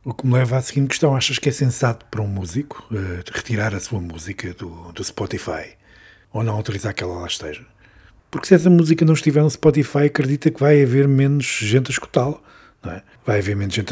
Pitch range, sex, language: 105-145 Hz, male, Portuguese